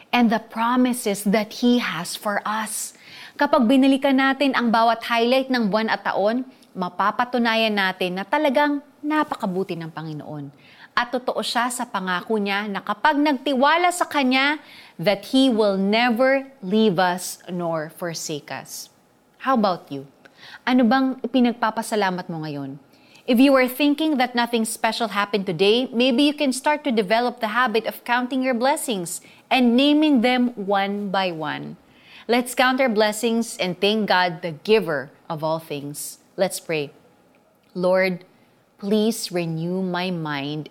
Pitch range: 180-250 Hz